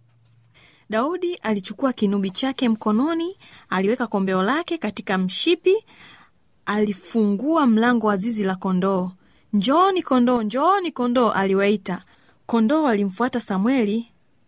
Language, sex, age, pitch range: Swahili, female, 30-49, 190-270 Hz